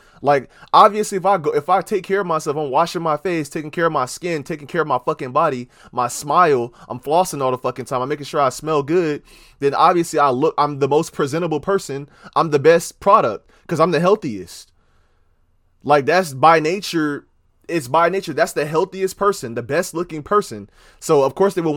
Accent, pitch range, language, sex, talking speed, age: American, 130-180 Hz, English, male, 210 wpm, 20-39